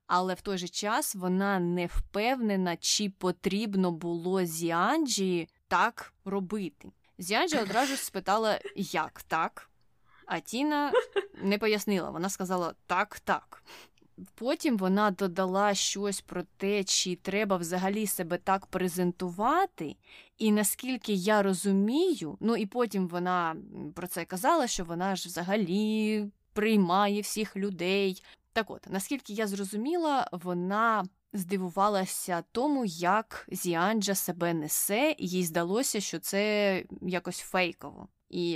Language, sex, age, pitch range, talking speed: Ukrainian, female, 20-39, 180-215 Hz, 120 wpm